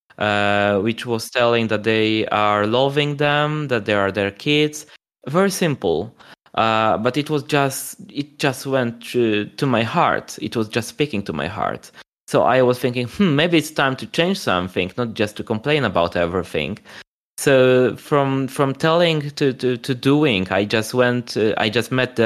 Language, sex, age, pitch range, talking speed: English, male, 20-39, 110-135 Hz, 185 wpm